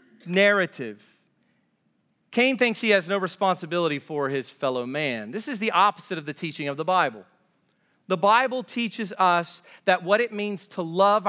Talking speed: 165 wpm